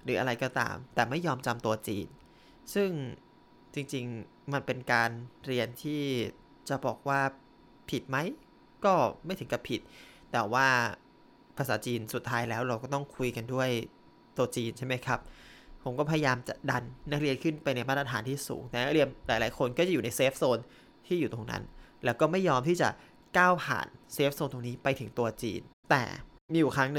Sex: male